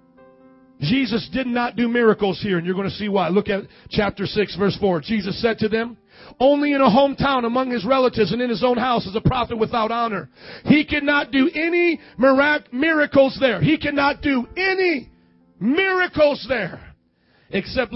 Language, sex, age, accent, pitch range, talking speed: English, male, 40-59, American, 235-290 Hz, 175 wpm